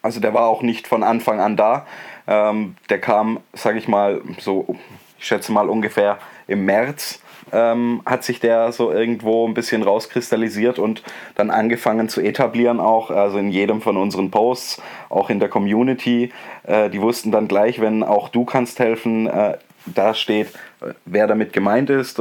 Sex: male